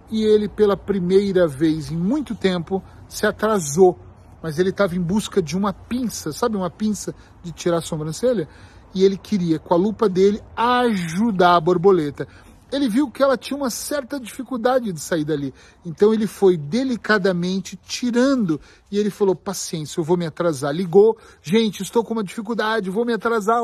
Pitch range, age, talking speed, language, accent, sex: 170-225 Hz, 40-59, 175 wpm, Portuguese, Brazilian, male